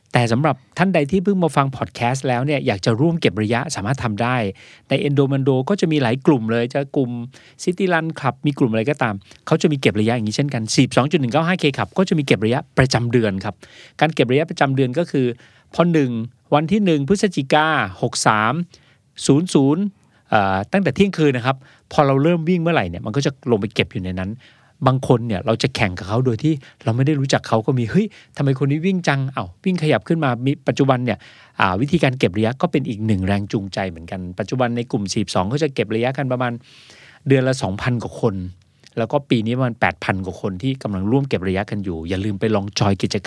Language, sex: Thai, male